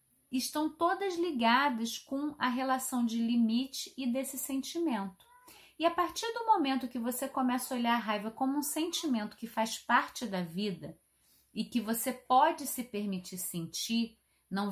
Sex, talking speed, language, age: female, 160 wpm, Portuguese, 30-49